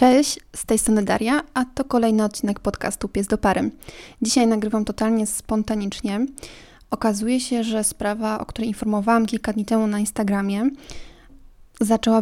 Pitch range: 215-240 Hz